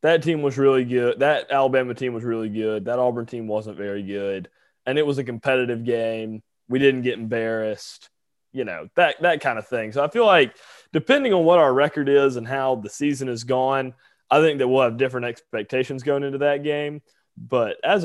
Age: 20-39